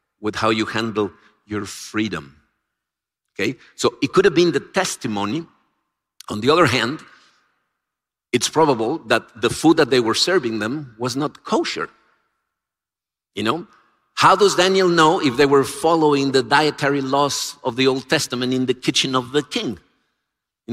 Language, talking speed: English, 160 wpm